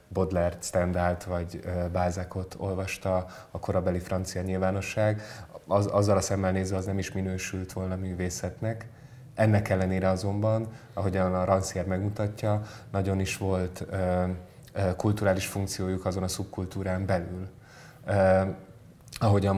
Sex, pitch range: male, 95-100 Hz